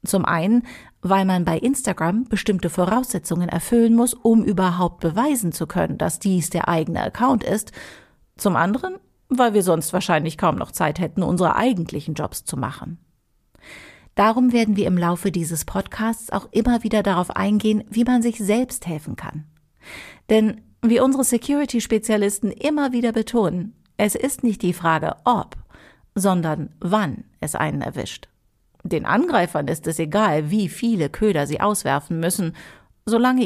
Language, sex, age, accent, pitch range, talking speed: German, female, 40-59, German, 170-230 Hz, 150 wpm